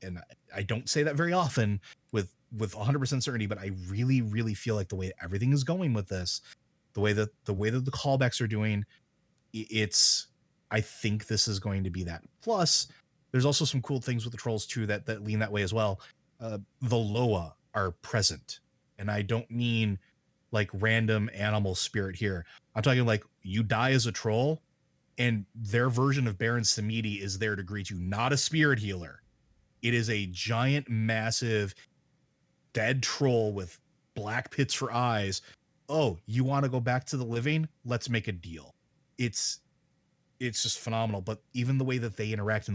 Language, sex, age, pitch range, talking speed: English, male, 30-49, 100-125 Hz, 185 wpm